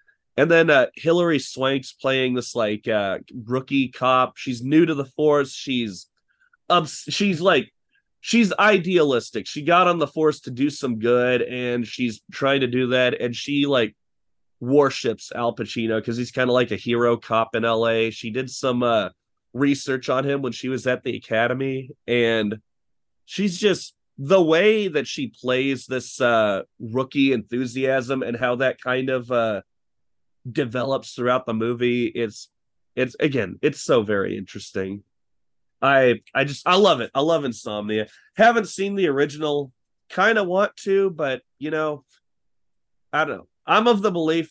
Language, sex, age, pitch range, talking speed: English, male, 30-49, 120-155 Hz, 165 wpm